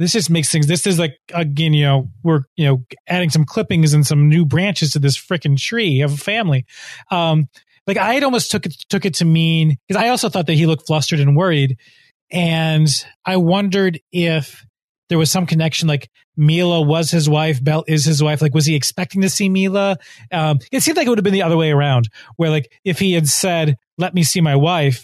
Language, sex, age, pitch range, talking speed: English, male, 30-49, 140-175 Hz, 230 wpm